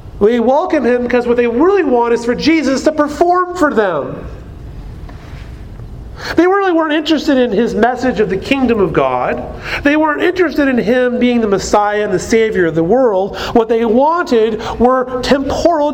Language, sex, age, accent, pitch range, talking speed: English, male, 40-59, American, 220-290 Hz, 175 wpm